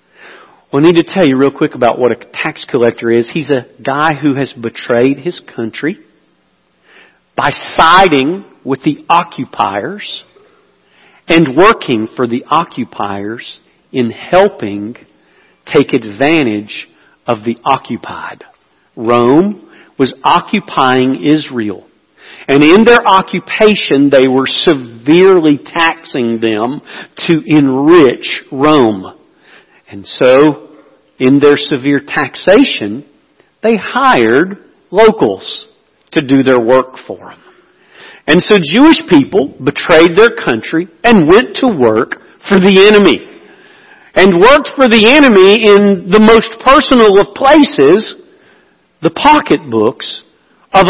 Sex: male